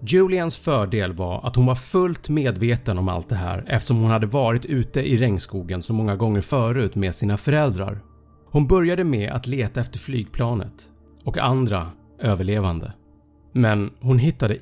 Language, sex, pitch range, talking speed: Swedish, male, 95-130 Hz, 160 wpm